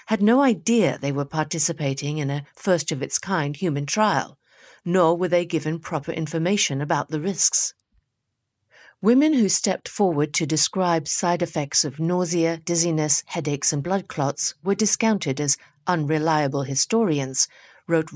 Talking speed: 135 wpm